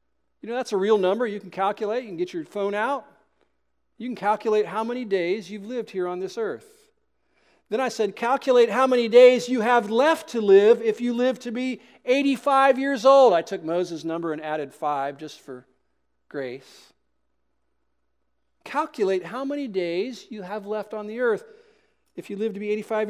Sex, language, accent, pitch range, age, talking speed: male, English, American, 195-280 Hz, 40-59, 190 wpm